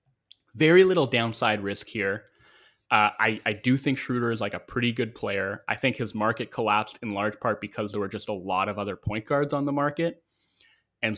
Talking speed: 210 wpm